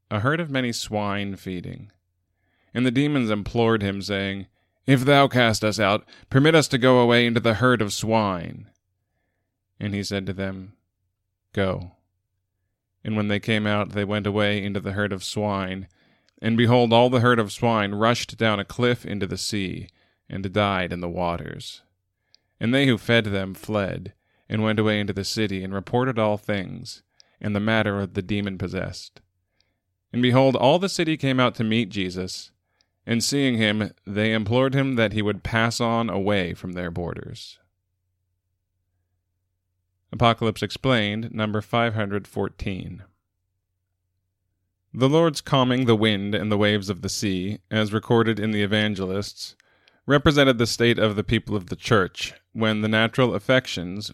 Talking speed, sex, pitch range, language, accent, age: 165 wpm, male, 95-115 Hz, English, American, 20-39